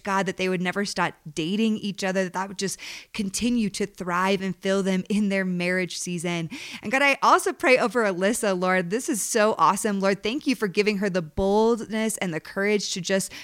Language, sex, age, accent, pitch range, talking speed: English, female, 20-39, American, 185-220 Hz, 215 wpm